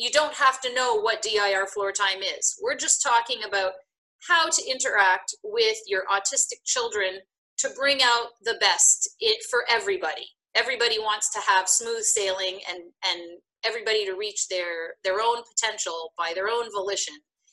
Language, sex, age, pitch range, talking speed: English, female, 30-49, 195-320 Hz, 160 wpm